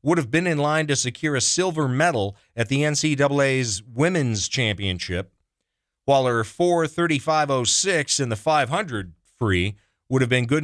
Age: 40-59